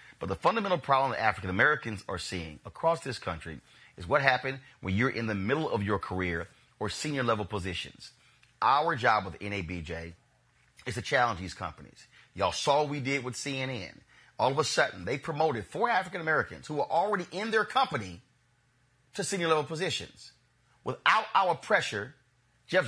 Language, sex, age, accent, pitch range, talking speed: English, male, 30-49, American, 105-155 Hz, 165 wpm